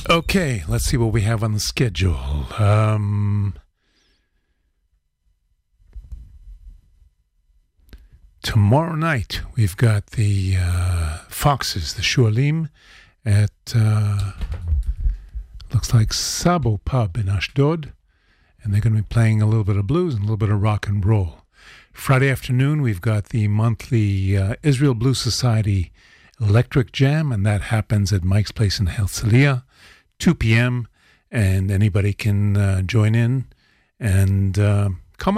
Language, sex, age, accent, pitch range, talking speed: English, male, 50-69, American, 95-120 Hz, 130 wpm